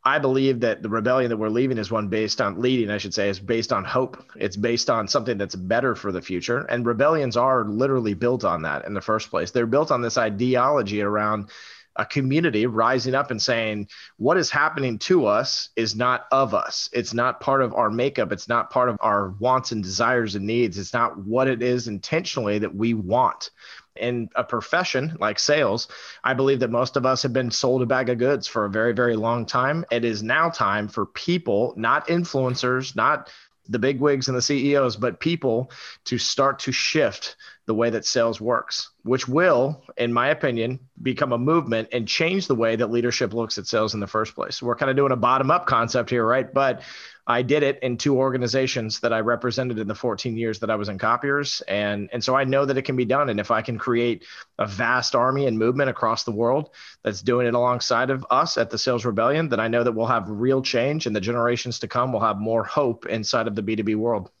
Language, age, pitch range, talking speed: English, 30-49, 110-130 Hz, 225 wpm